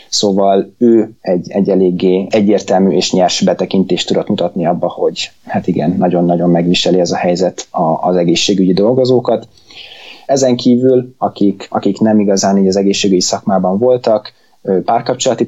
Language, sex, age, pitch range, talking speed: Hungarian, male, 20-39, 95-105 Hz, 130 wpm